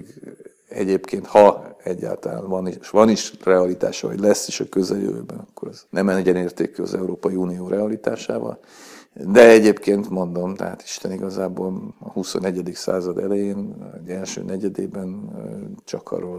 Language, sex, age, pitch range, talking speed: Hungarian, male, 50-69, 90-105 Hz, 130 wpm